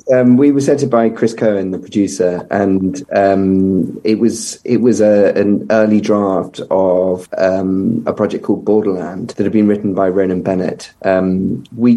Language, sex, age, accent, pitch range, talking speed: English, male, 30-49, British, 95-110 Hz, 175 wpm